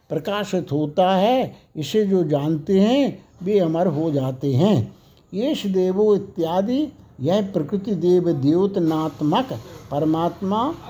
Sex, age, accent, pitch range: male, 60-79, native, 160-210 Hz